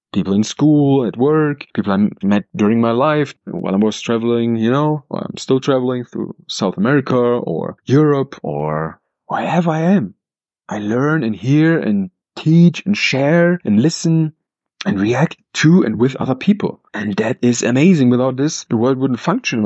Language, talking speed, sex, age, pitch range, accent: English, 175 wpm, male, 30-49, 120-165 Hz, German